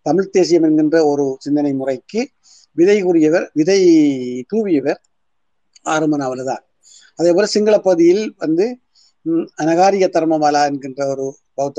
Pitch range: 145-185 Hz